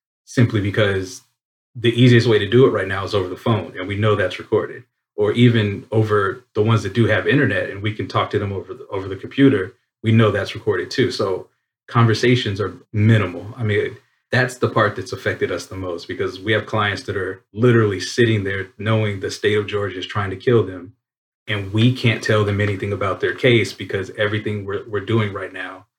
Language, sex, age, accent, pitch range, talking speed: English, male, 30-49, American, 100-120 Hz, 210 wpm